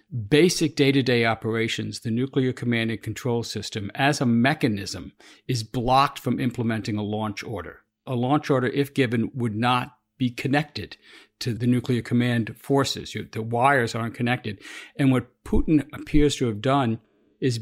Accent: American